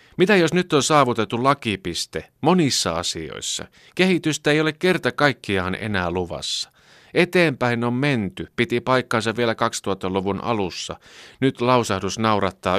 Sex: male